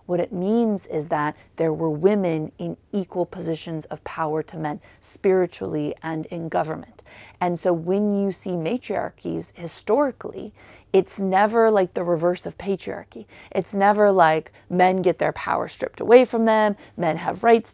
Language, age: English, 30-49